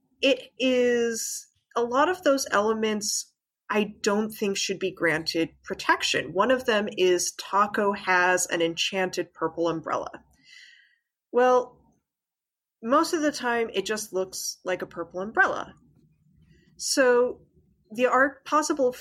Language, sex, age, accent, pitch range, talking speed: English, female, 30-49, American, 190-245 Hz, 125 wpm